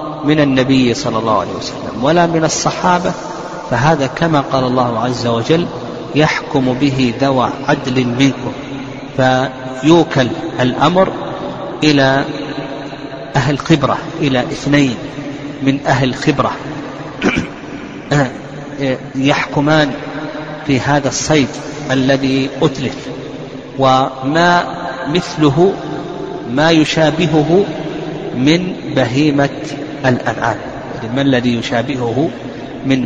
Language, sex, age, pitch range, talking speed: Arabic, male, 40-59, 130-150 Hz, 85 wpm